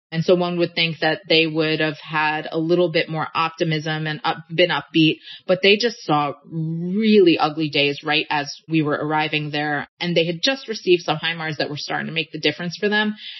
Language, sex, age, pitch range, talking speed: English, female, 30-49, 160-195 Hz, 215 wpm